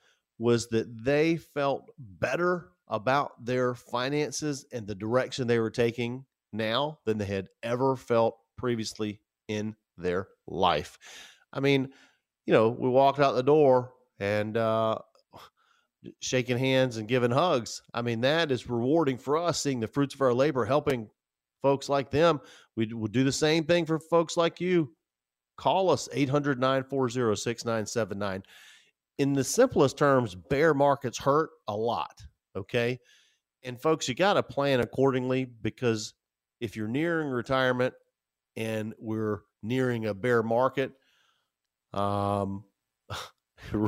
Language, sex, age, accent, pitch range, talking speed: English, male, 40-59, American, 105-135 Hz, 135 wpm